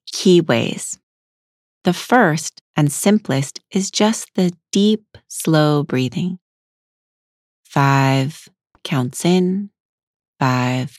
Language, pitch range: English, 140-185 Hz